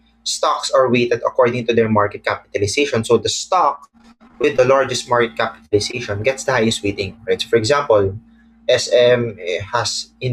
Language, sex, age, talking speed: English, male, 20-39, 155 wpm